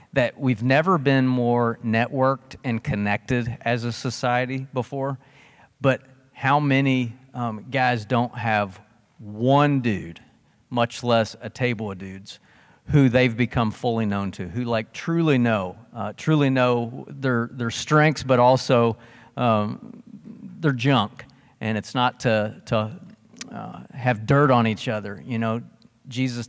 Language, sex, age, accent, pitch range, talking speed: English, male, 40-59, American, 110-130 Hz, 140 wpm